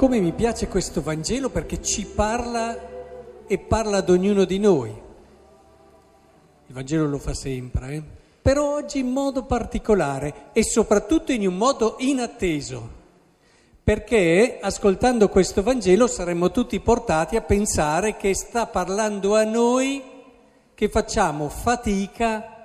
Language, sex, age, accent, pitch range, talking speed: Italian, male, 50-69, native, 155-225 Hz, 125 wpm